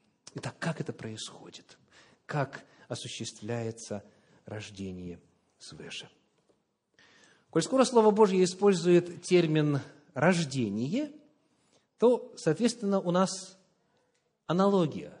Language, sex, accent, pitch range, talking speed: Russian, male, native, 140-200 Hz, 80 wpm